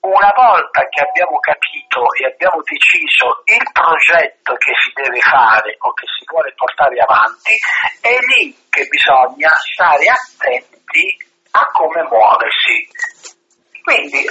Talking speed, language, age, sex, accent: 125 wpm, Italian, 50-69, male, native